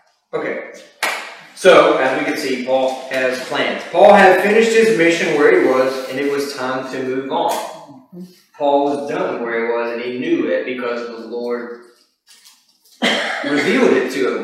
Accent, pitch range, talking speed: American, 130-180 Hz, 170 wpm